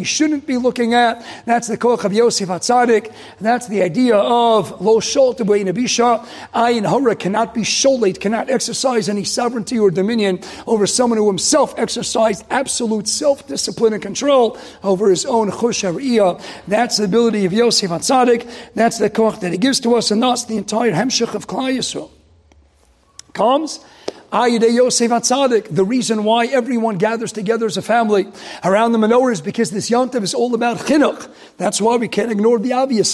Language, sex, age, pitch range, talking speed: English, male, 40-59, 215-260 Hz, 165 wpm